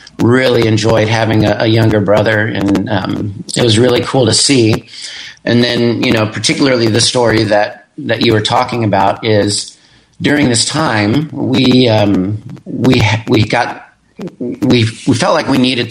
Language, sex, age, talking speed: English, male, 40-59, 160 wpm